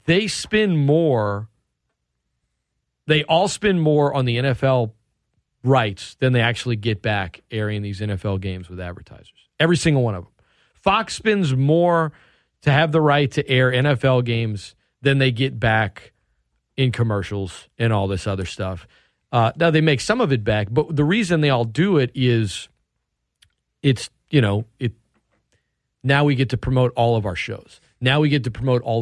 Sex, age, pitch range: male, 40-59, 105-140 Hz